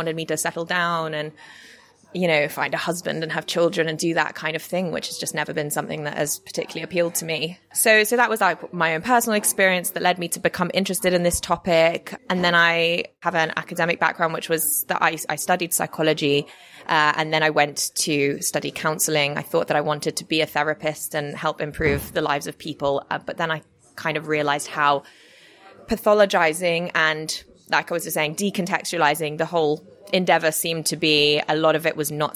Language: English